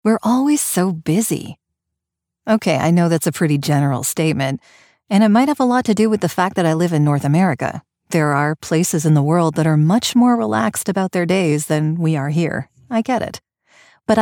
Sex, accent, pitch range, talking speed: female, American, 155-215 Hz, 215 wpm